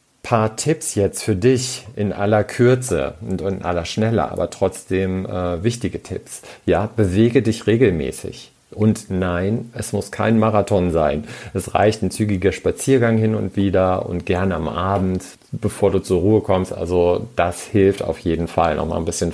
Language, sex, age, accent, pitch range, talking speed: German, male, 50-69, German, 90-110 Hz, 170 wpm